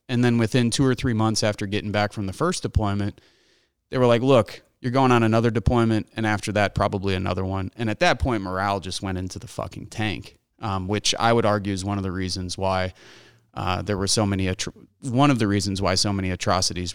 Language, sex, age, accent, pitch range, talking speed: English, male, 30-49, American, 95-115 Hz, 235 wpm